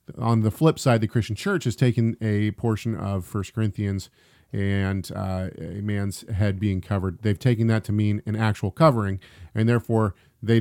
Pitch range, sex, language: 100-120 Hz, male, English